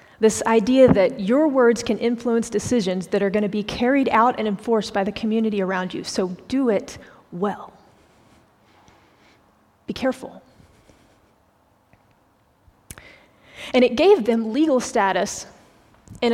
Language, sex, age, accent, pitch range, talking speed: English, female, 30-49, American, 210-250 Hz, 125 wpm